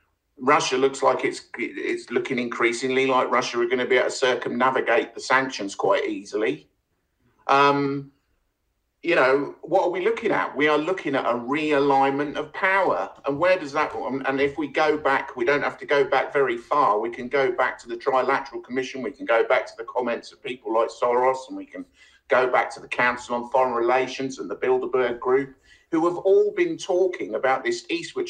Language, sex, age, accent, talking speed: English, male, 50-69, British, 205 wpm